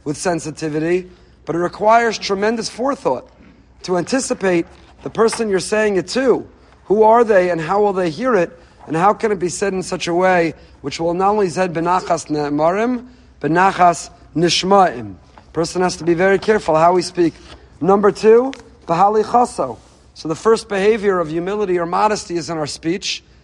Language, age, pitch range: English, 40-59, 170-205 Hz